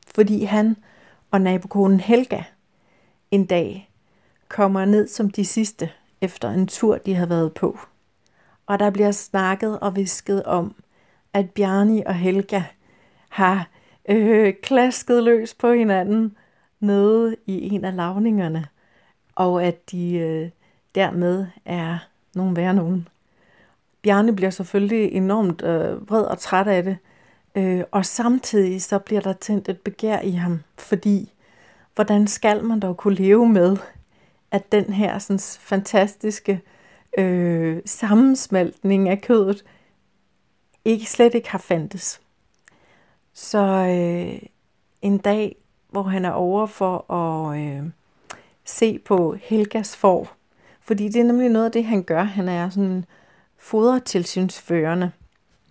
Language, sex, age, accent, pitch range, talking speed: Danish, female, 60-79, native, 185-210 Hz, 130 wpm